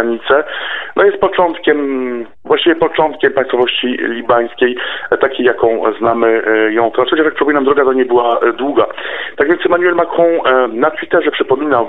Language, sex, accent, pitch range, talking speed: Polish, male, native, 115-150 Hz, 135 wpm